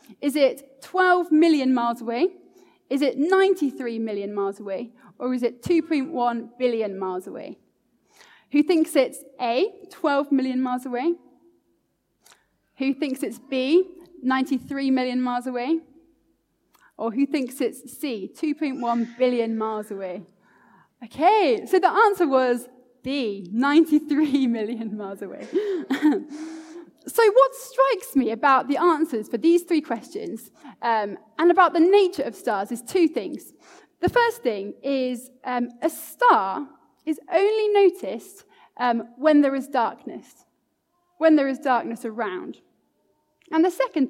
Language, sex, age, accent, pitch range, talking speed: English, female, 20-39, British, 235-335 Hz, 135 wpm